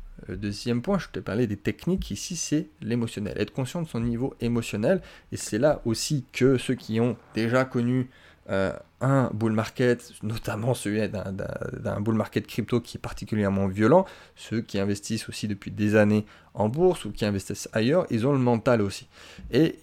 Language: French